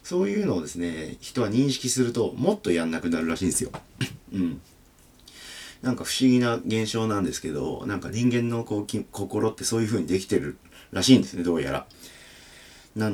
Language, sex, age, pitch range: Japanese, male, 40-59, 90-125 Hz